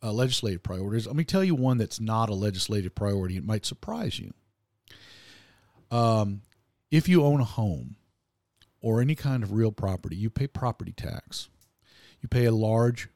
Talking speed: 170 wpm